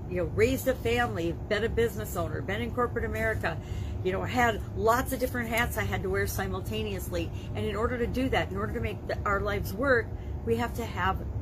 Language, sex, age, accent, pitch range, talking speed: English, female, 40-59, American, 95-115 Hz, 220 wpm